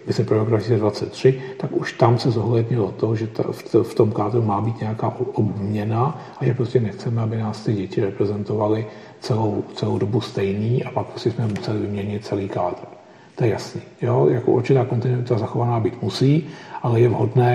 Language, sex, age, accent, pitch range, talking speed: Czech, male, 40-59, native, 110-125 Hz, 180 wpm